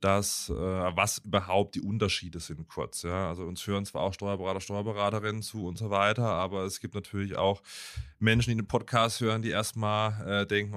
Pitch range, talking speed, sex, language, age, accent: 95-115 Hz, 190 wpm, male, German, 30-49, German